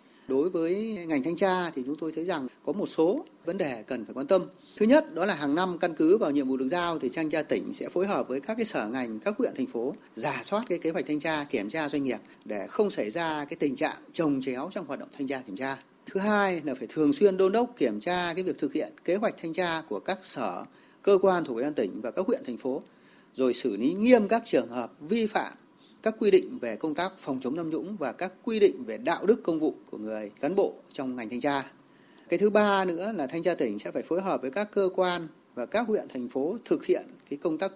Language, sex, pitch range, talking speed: Vietnamese, male, 150-215 Hz, 265 wpm